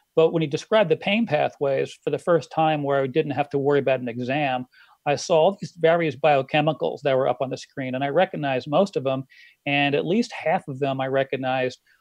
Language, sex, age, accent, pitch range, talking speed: English, male, 40-59, American, 140-165 Hz, 225 wpm